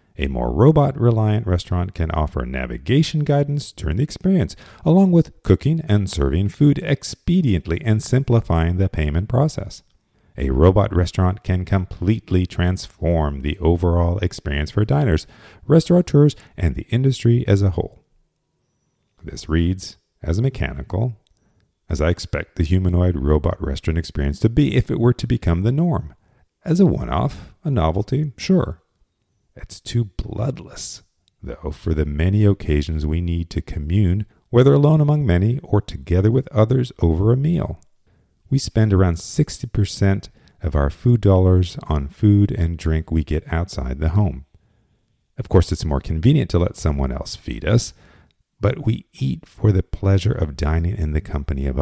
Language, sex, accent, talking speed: English, male, American, 155 wpm